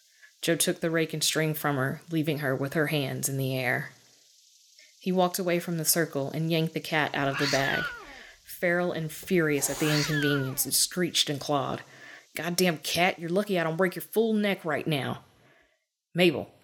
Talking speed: 190 wpm